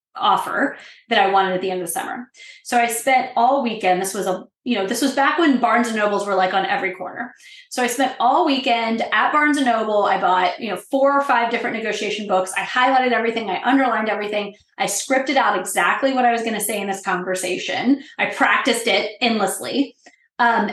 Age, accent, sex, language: 20-39, American, female, English